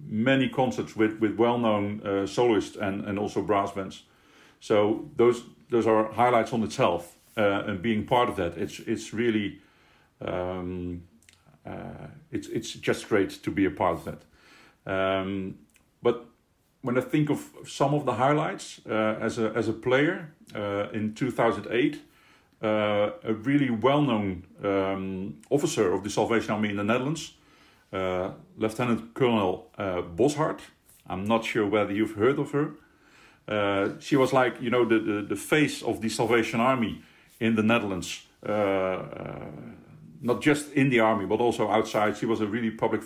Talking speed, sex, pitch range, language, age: 170 wpm, male, 100-120 Hz, English, 50-69